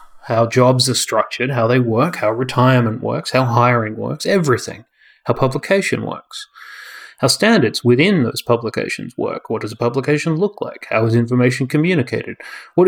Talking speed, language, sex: 160 wpm, English, male